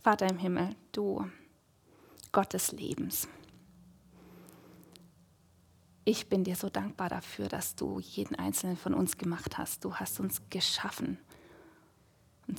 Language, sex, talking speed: German, female, 125 wpm